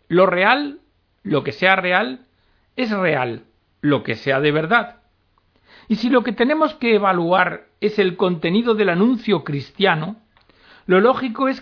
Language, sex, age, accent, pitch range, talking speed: Spanish, male, 60-79, Spanish, 150-225 Hz, 150 wpm